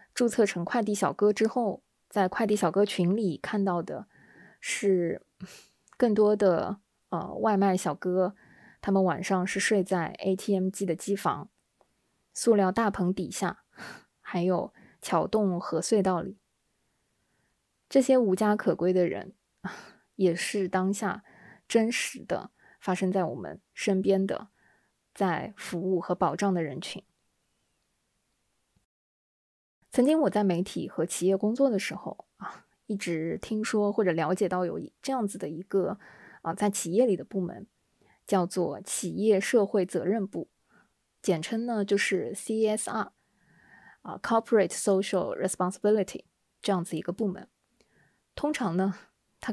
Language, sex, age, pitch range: Chinese, female, 20-39, 185-210 Hz